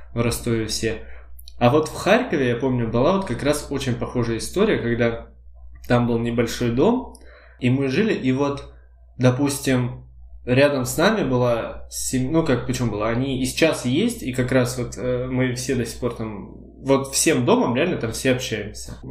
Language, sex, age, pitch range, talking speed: Russian, male, 20-39, 115-135 Hz, 180 wpm